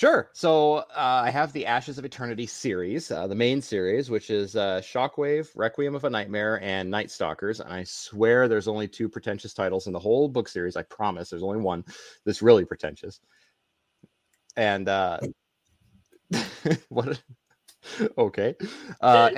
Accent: American